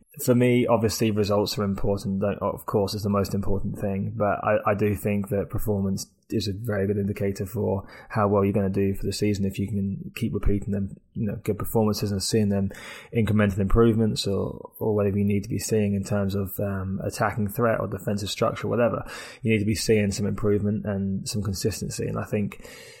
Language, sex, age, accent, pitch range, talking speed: English, male, 20-39, British, 100-110 Hz, 210 wpm